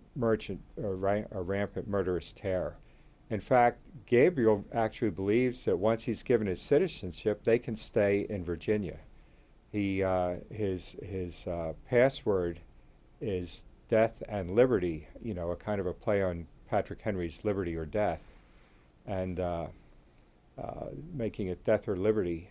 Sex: male